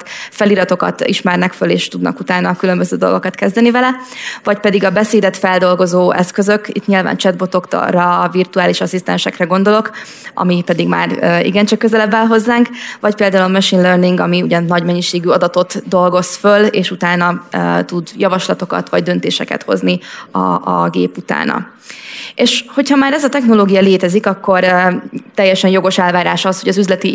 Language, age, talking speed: Hungarian, 20-39, 155 wpm